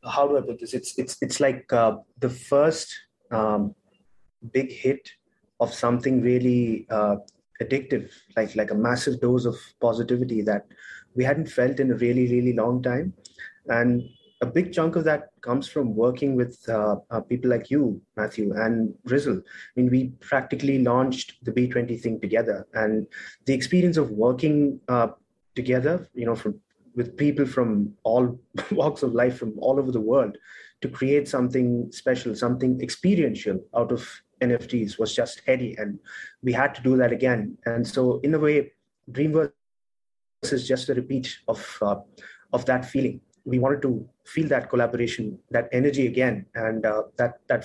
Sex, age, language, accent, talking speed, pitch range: male, 30-49, English, Indian, 165 wpm, 115-135 Hz